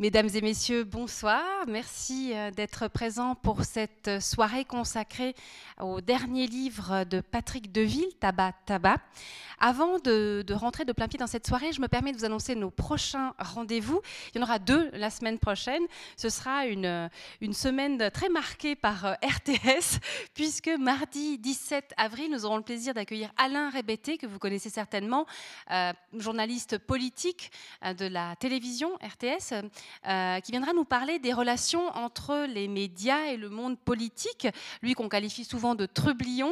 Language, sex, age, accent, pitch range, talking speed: French, female, 30-49, French, 205-260 Hz, 160 wpm